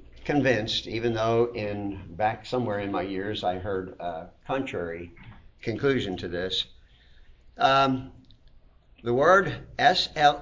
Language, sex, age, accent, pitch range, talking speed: English, male, 50-69, American, 100-130 Hz, 120 wpm